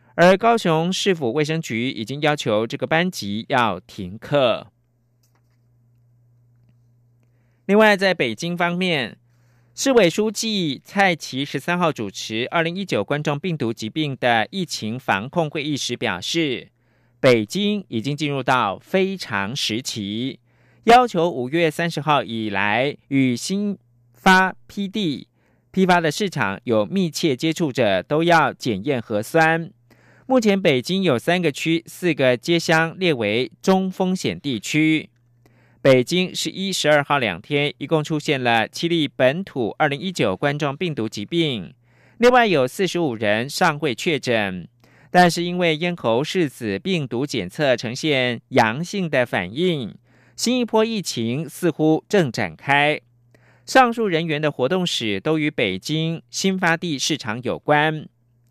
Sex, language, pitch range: male, German, 120-175 Hz